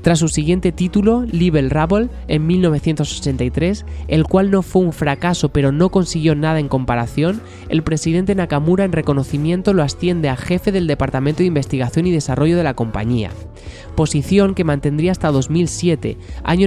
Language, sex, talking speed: Spanish, male, 160 wpm